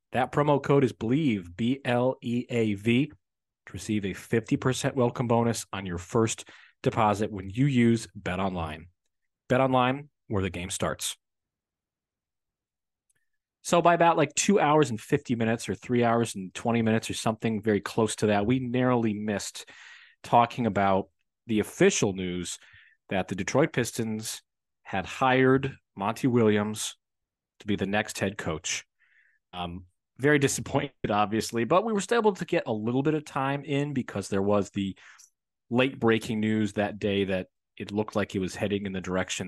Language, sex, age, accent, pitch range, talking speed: English, male, 40-59, American, 100-125 Hz, 170 wpm